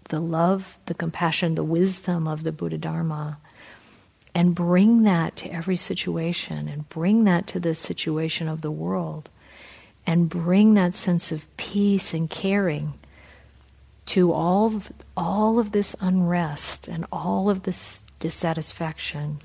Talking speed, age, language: 135 wpm, 50-69, English